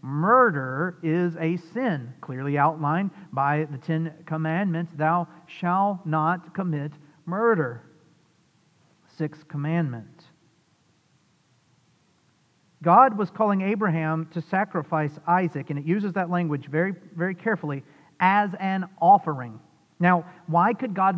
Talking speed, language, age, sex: 110 wpm, English, 40-59, male